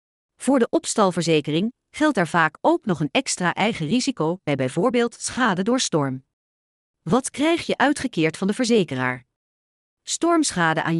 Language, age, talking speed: English, 40-59, 140 wpm